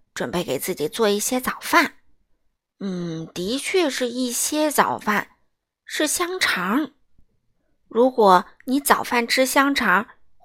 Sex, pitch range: female, 215-310 Hz